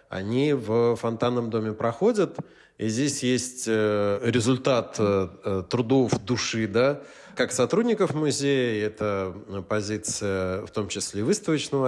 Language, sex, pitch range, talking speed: Russian, male, 110-145 Hz, 110 wpm